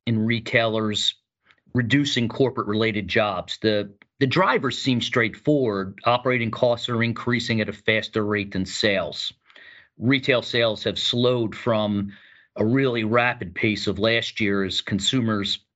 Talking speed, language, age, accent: 130 wpm, English, 40-59, American